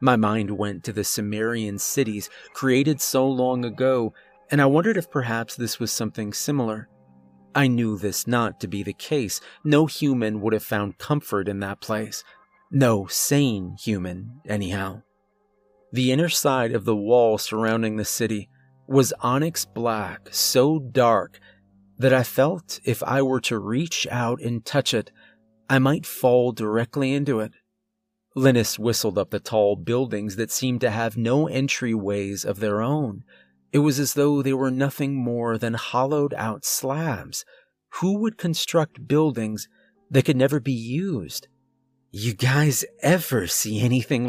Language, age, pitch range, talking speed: English, 30-49, 105-135 Hz, 155 wpm